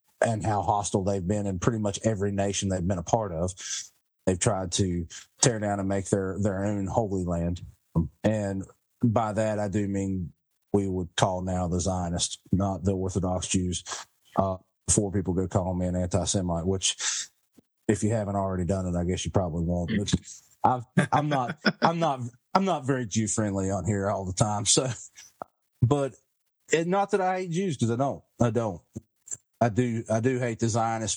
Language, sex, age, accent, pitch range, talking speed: English, male, 30-49, American, 100-120 Hz, 195 wpm